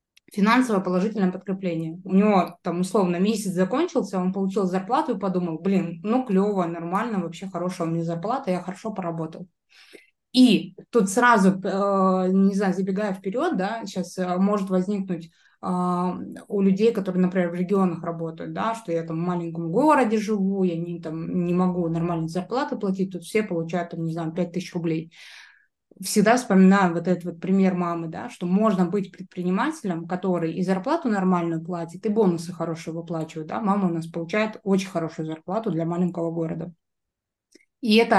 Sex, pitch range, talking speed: female, 175-205 Hz, 165 wpm